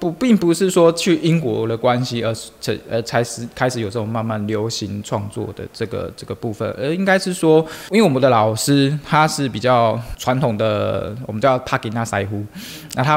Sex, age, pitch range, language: male, 20-39, 110-130 Hz, Chinese